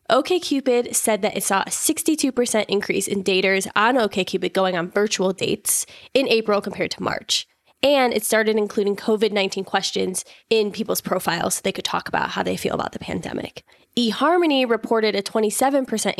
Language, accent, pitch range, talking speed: English, American, 190-235 Hz, 165 wpm